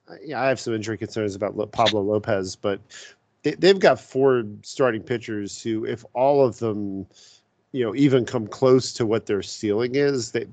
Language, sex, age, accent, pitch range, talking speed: English, male, 40-59, American, 105-130 Hz, 180 wpm